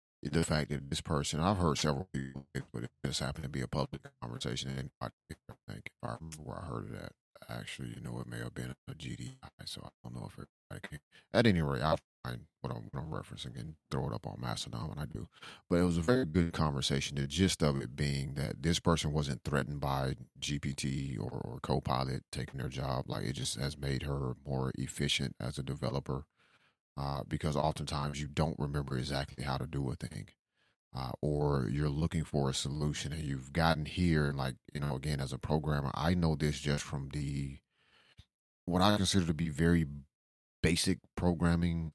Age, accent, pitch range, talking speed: 30-49, American, 70-80 Hz, 205 wpm